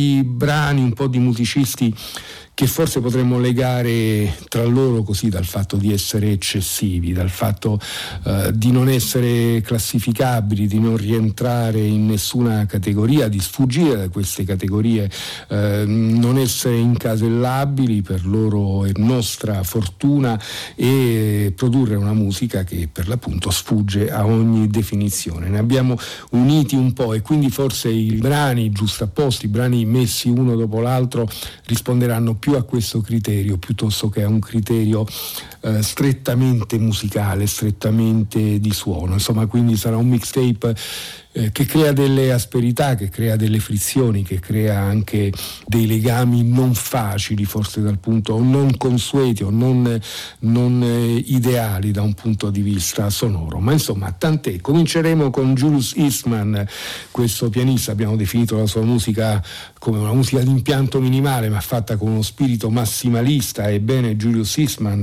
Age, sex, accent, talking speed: 50-69, male, native, 140 wpm